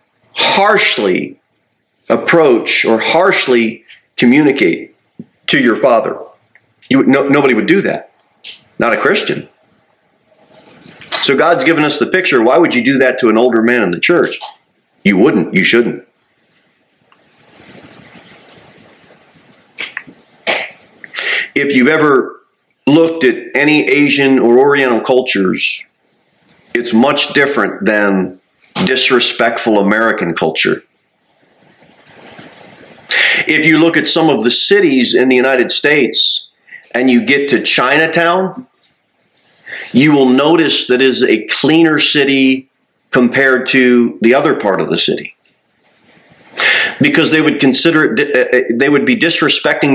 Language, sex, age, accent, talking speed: English, male, 40-59, American, 120 wpm